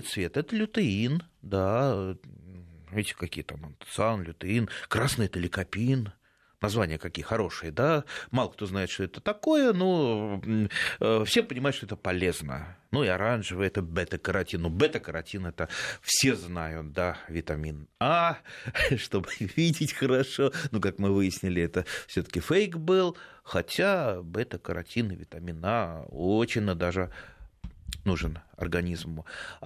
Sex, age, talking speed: male, 30-49, 125 wpm